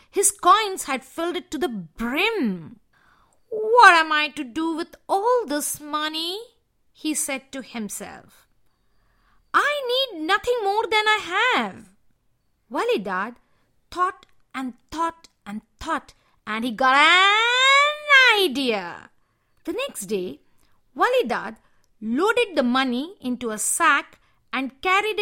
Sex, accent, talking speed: female, Indian, 120 wpm